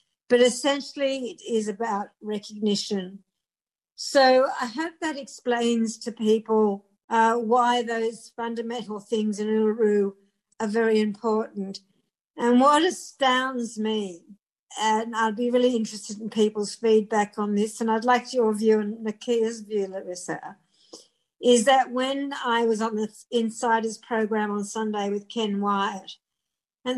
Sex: female